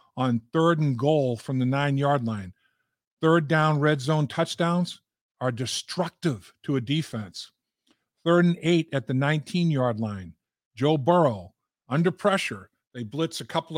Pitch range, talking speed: 130-165 Hz, 145 wpm